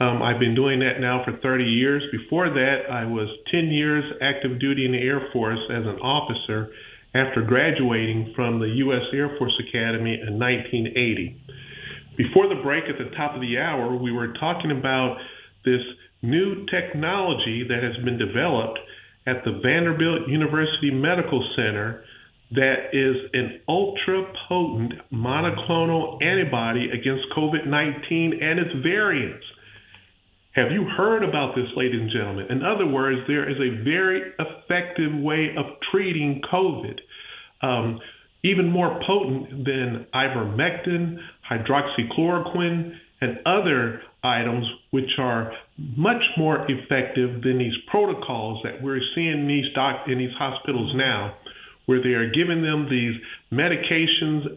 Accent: American